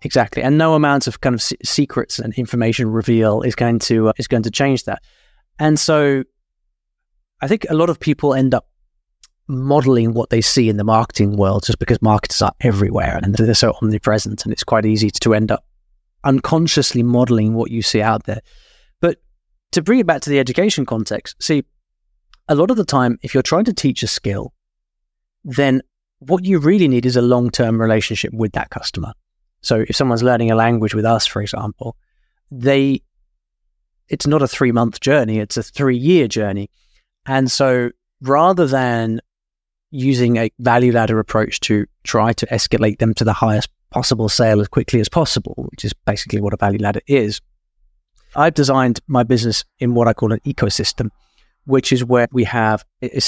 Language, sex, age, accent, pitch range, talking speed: English, male, 20-39, British, 110-135 Hz, 180 wpm